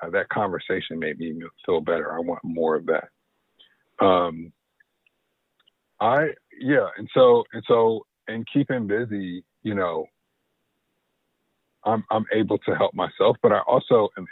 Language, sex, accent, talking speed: English, male, American, 145 wpm